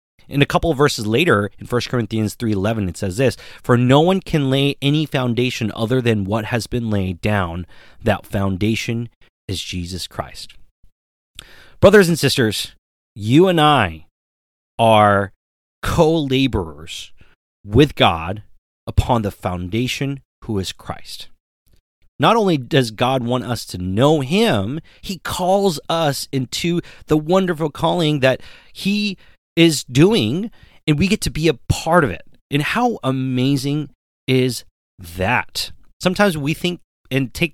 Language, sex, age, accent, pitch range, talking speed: English, male, 30-49, American, 105-155 Hz, 140 wpm